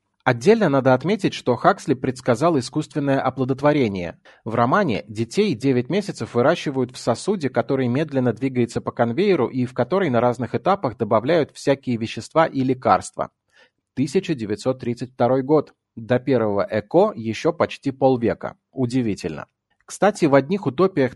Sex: male